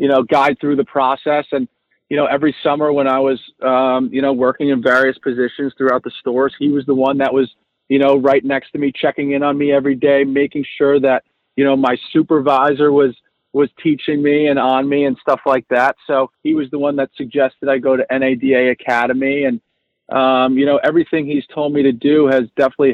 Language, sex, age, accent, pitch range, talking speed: English, male, 40-59, American, 130-145 Hz, 220 wpm